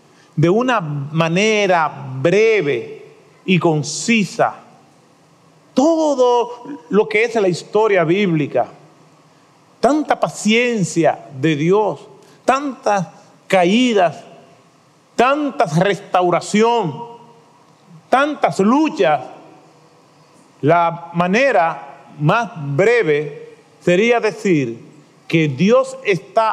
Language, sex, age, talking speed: Spanish, male, 40-59, 70 wpm